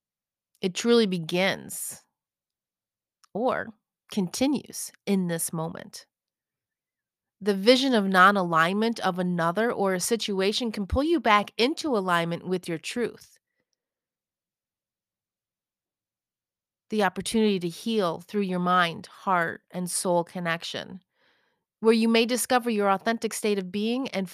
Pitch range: 170-210 Hz